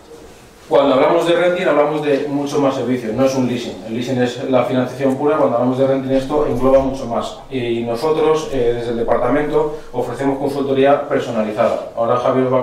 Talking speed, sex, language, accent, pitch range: 195 wpm, male, Spanish, Spanish, 120-135 Hz